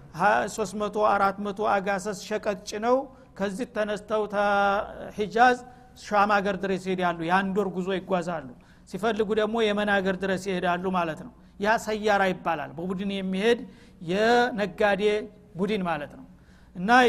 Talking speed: 110 wpm